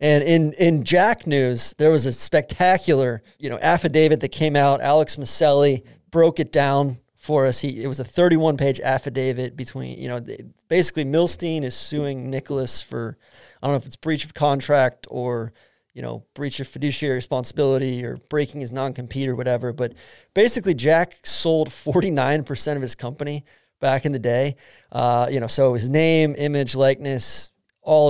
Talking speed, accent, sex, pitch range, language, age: 165 wpm, American, male, 125-145 Hz, English, 30-49